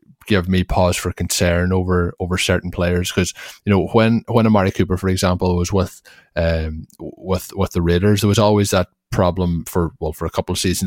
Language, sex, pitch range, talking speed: English, male, 90-100 Hz, 205 wpm